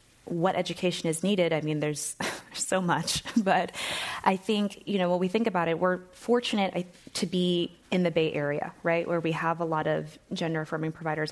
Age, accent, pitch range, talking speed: 20-39, American, 150-175 Hz, 195 wpm